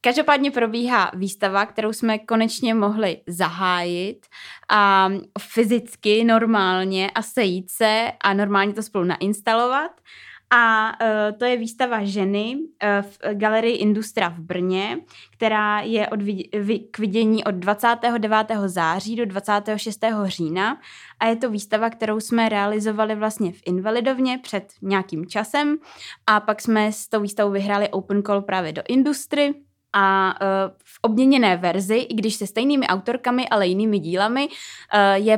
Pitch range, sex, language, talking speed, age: 200-235 Hz, female, Czech, 130 wpm, 20-39